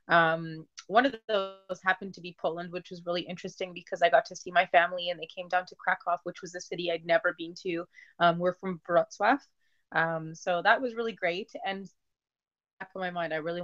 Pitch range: 170-190 Hz